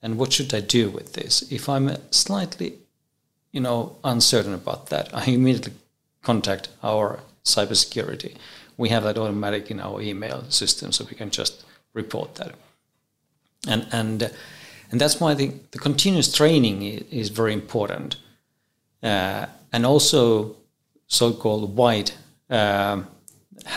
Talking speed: 135 wpm